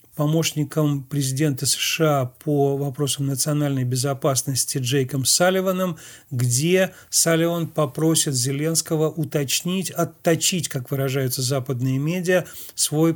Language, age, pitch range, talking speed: Russian, 40-59, 140-165 Hz, 90 wpm